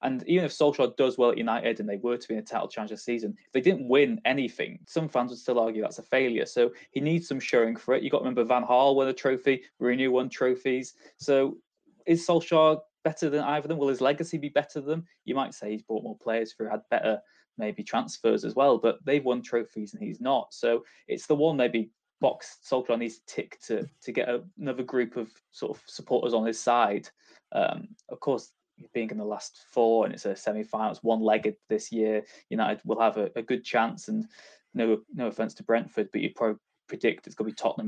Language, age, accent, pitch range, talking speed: English, 20-39, British, 115-150 Hz, 235 wpm